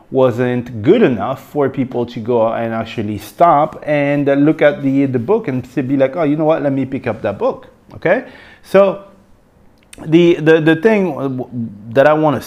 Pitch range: 120-160 Hz